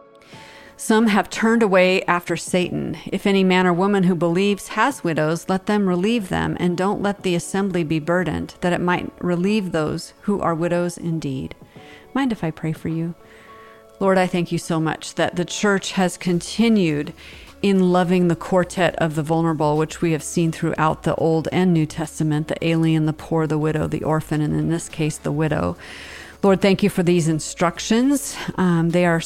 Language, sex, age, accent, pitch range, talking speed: English, female, 40-59, American, 155-185 Hz, 190 wpm